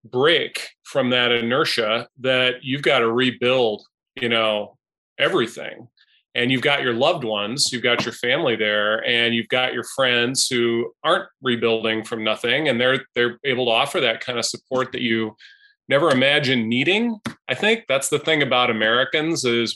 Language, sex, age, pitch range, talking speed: English, male, 30-49, 120-140 Hz, 170 wpm